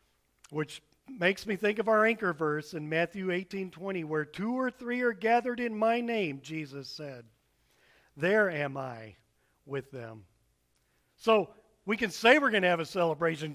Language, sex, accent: English, male, American